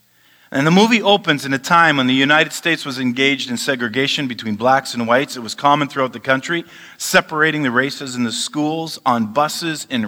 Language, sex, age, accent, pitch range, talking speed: English, male, 40-59, American, 95-140 Hz, 200 wpm